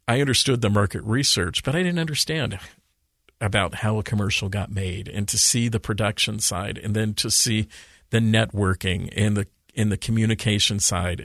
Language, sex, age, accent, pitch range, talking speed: English, male, 50-69, American, 100-115 Hz, 175 wpm